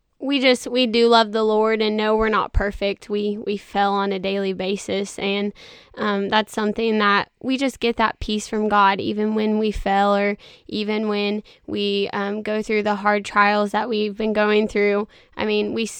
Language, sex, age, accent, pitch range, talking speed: English, female, 10-29, American, 215-240 Hz, 200 wpm